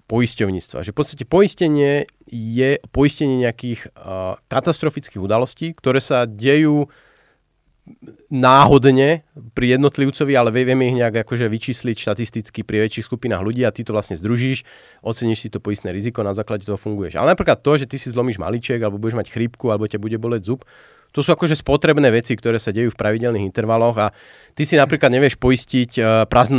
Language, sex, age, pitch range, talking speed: Slovak, male, 30-49, 115-145 Hz, 170 wpm